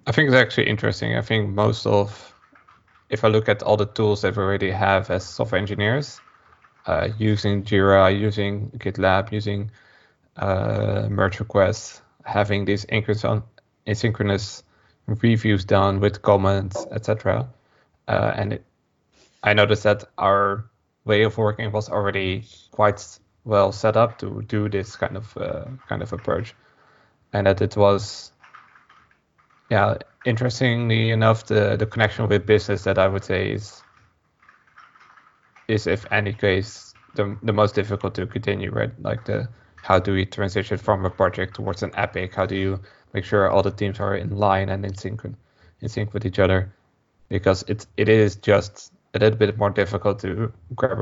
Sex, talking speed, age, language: male, 160 wpm, 20-39, English